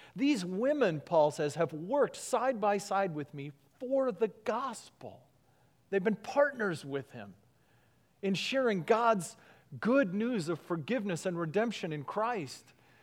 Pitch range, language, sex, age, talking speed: 135-195 Hz, English, male, 40-59, 140 wpm